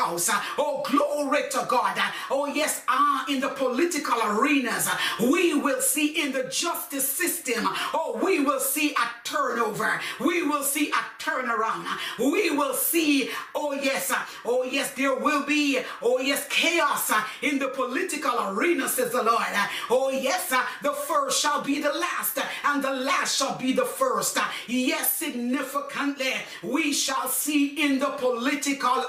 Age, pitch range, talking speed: 40-59, 260-285 Hz, 150 wpm